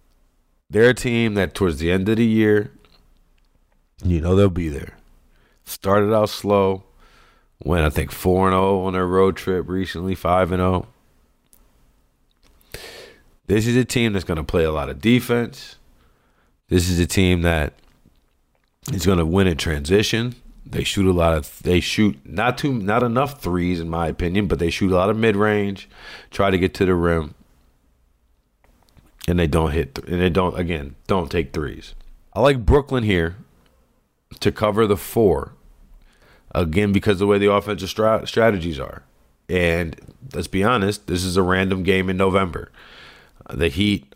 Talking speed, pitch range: 165 wpm, 85-100 Hz